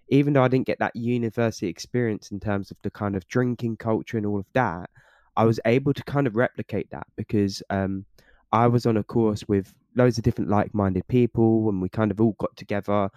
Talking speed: 220 wpm